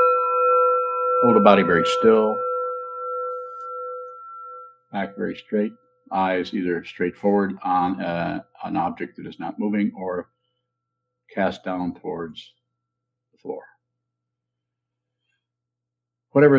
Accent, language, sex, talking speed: American, English, male, 100 wpm